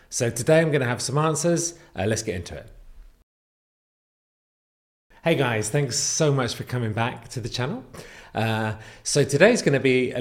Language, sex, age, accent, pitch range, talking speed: English, male, 30-49, British, 105-145 Hz, 180 wpm